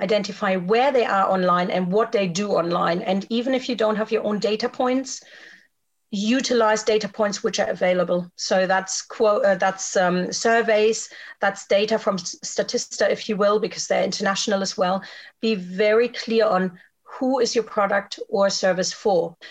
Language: English